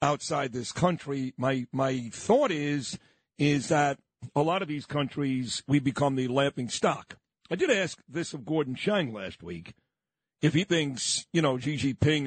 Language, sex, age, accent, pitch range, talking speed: English, male, 50-69, American, 140-170 Hz, 170 wpm